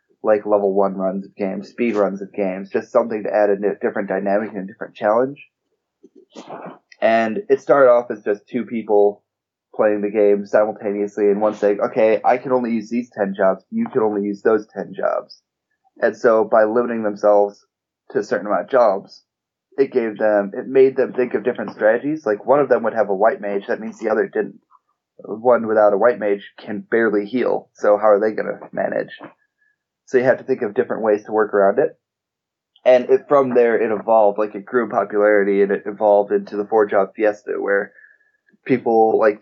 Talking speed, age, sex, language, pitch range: 205 wpm, 20-39, male, English, 100-125 Hz